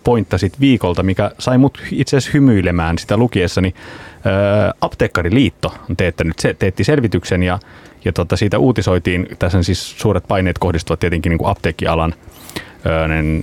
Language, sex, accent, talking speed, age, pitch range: Finnish, male, native, 135 wpm, 30-49, 85-105 Hz